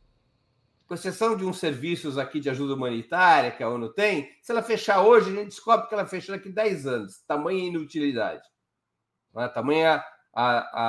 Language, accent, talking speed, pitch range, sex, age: Portuguese, Brazilian, 165 wpm, 140-200 Hz, male, 50-69